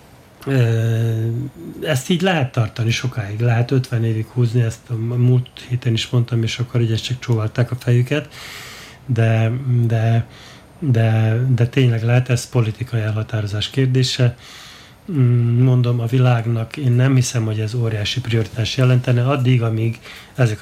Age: 30-49